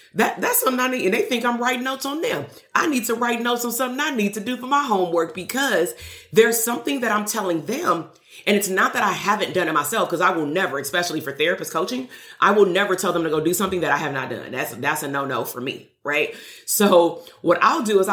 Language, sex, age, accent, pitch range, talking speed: English, female, 30-49, American, 165-225 Hz, 255 wpm